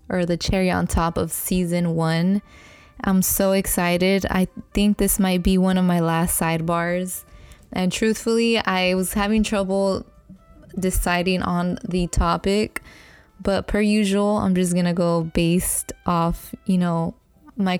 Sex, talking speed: female, 150 wpm